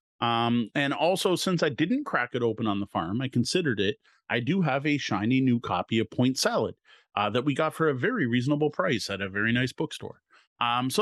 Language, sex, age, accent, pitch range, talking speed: English, male, 30-49, American, 115-140 Hz, 225 wpm